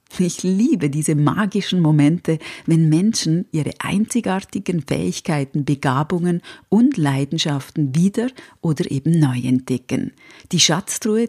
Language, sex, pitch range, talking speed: German, female, 140-190 Hz, 105 wpm